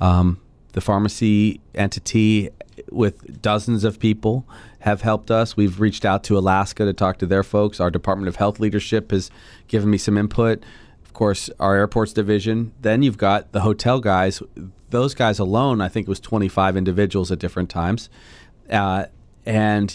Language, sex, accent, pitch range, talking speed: English, male, American, 95-110 Hz, 170 wpm